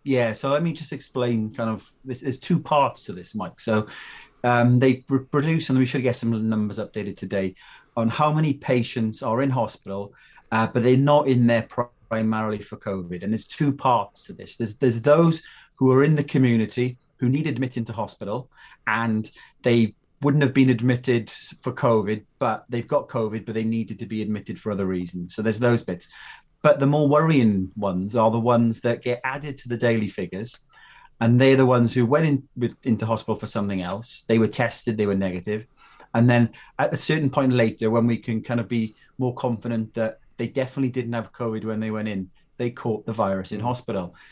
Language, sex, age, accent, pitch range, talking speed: English, male, 30-49, British, 110-130 Hz, 205 wpm